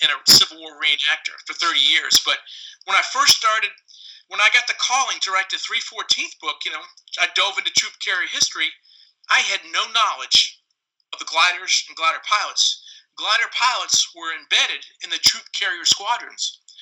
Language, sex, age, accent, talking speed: English, male, 50-69, American, 180 wpm